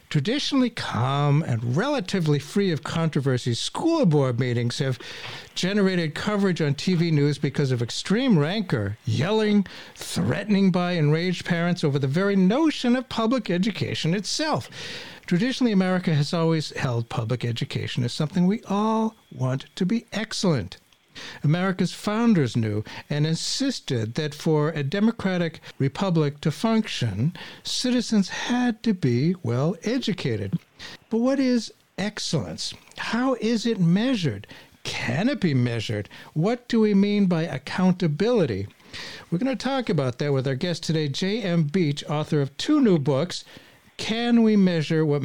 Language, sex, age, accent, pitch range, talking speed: English, male, 60-79, American, 135-195 Hz, 140 wpm